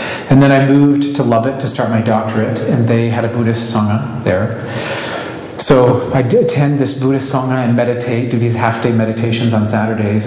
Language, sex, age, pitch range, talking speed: English, male, 40-59, 110-135 Hz, 180 wpm